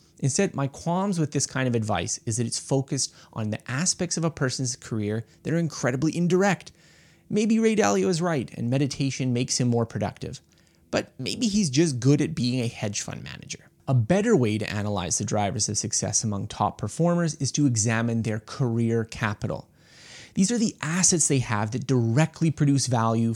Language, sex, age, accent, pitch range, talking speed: English, male, 20-39, American, 115-155 Hz, 190 wpm